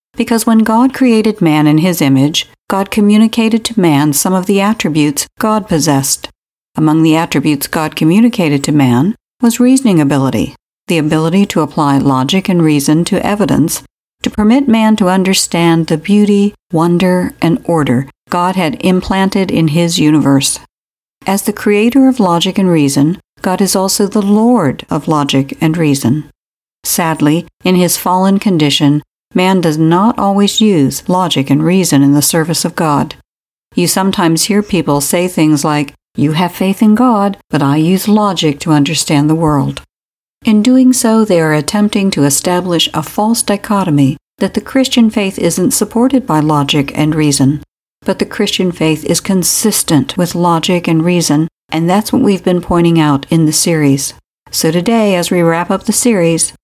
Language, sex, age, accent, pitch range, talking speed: English, female, 60-79, American, 150-205 Hz, 165 wpm